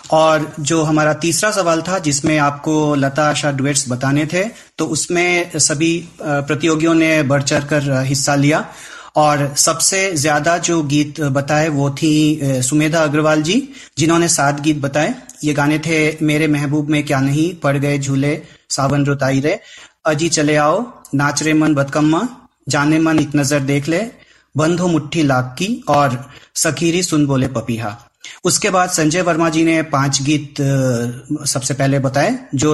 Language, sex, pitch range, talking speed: Hindi, male, 140-160 Hz, 150 wpm